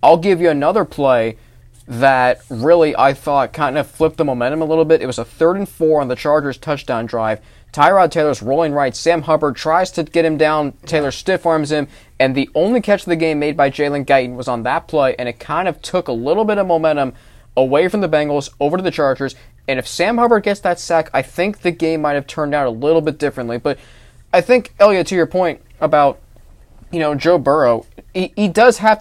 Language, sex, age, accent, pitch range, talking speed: English, male, 20-39, American, 135-175 Hz, 230 wpm